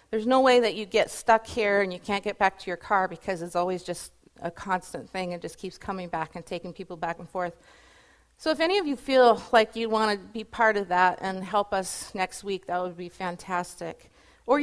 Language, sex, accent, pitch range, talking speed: English, female, American, 175-220 Hz, 240 wpm